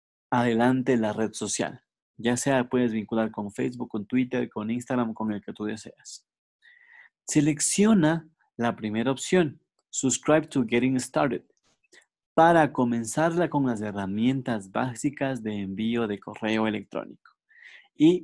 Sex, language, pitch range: male, Spanish, 115-155 Hz